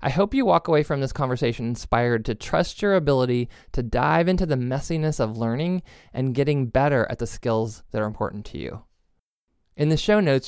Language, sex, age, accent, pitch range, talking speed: English, male, 20-39, American, 115-145 Hz, 200 wpm